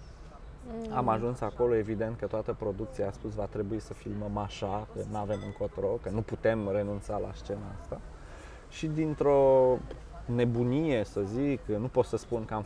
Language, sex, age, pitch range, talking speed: Romanian, male, 20-39, 105-140 Hz, 170 wpm